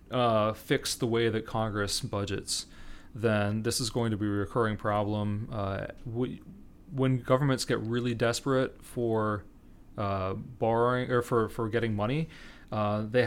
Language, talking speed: English, 150 wpm